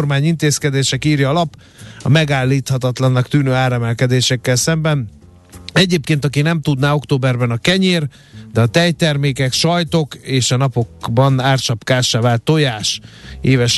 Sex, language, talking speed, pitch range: male, Hungarian, 120 wpm, 115-140 Hz